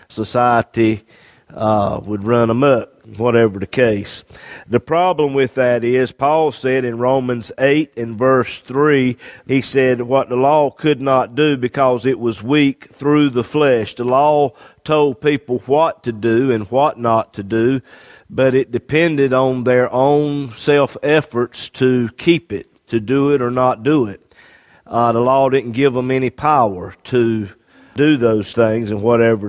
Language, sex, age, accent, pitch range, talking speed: English, male, 50-69, American, 120-145 Hz, 165 wpm